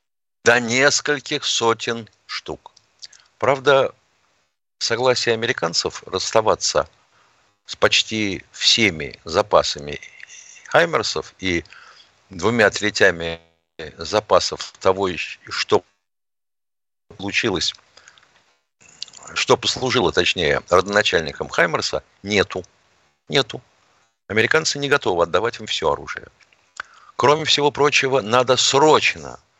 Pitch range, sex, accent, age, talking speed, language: 95-135 Hz, male, native, 50-69, 80 wpm, Russian